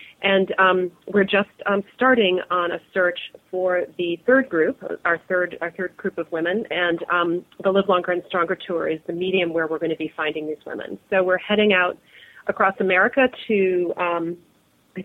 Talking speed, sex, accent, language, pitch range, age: 190 wpm, female, American, English, 170-195 Hz, 30-49